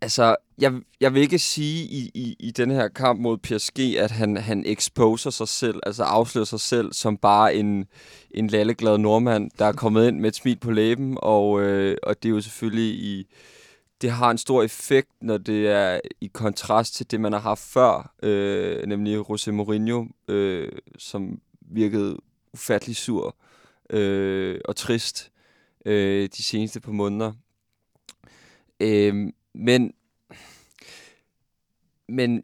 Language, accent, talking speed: Danish, native, 150 wpm